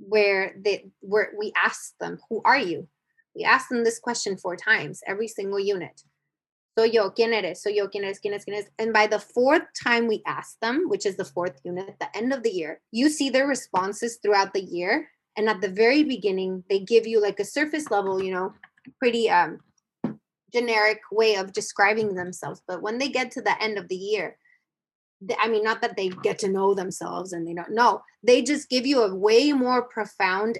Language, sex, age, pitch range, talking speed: English, female, 20-39, 195-245 Hz, 210 wpm